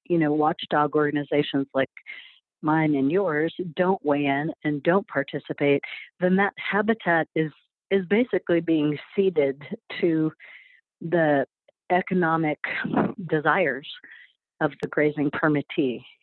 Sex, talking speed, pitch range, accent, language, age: female, 110 wpm, 150-185 Hz, American, English, 50-69